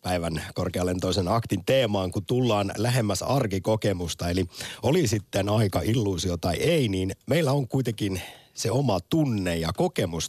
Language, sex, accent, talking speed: Finnish, male, native, 145 wpm